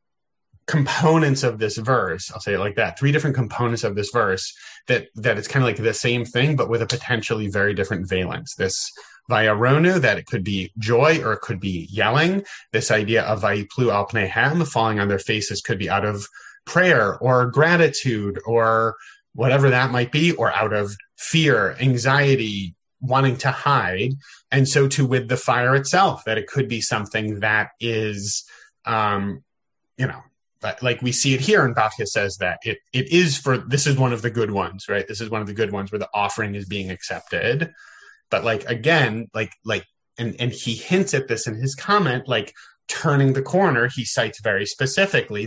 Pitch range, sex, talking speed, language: 105-135 Hz, male, 195 wpm, English